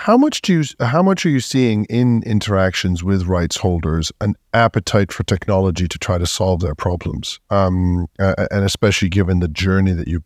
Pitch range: 90-105 Hz